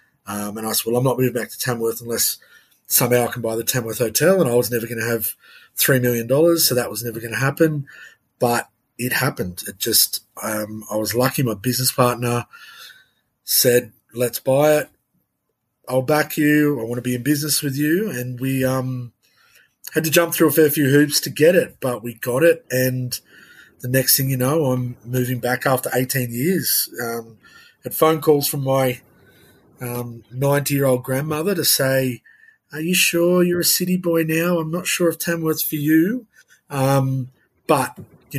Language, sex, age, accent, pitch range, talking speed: English, male, 30-49, Australian, 120-145 Hz, 195 wpm